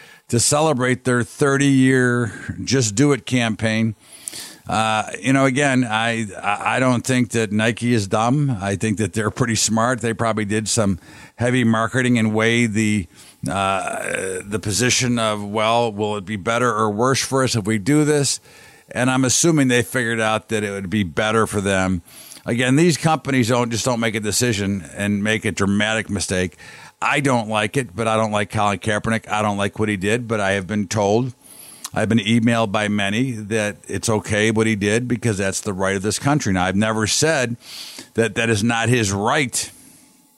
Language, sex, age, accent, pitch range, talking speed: English, male, 50-69, American, 105-125 Hz, 190 wpm